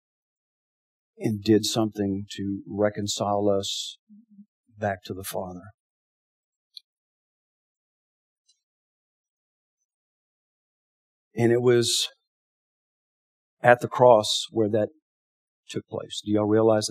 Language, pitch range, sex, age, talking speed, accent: English, 95-115 Hz, male, 50-69, 80 wpm, American